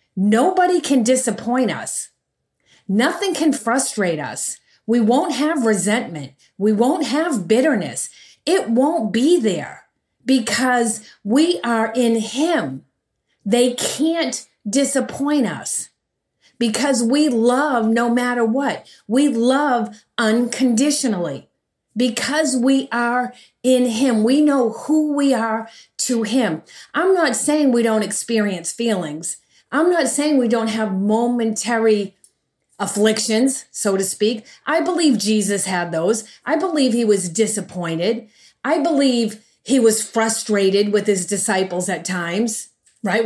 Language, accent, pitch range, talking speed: English, American, 205-255 Hz, 125 wpm